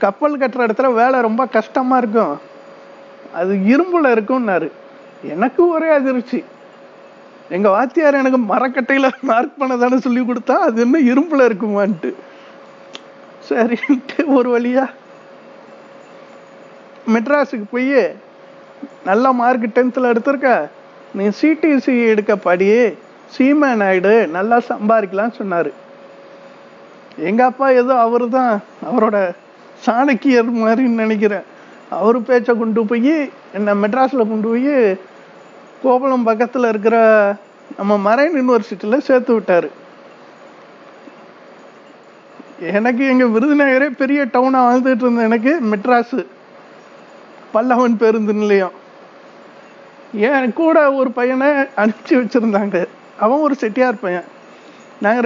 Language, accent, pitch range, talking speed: Tamil, native, 225-270 Hz, 95 wpm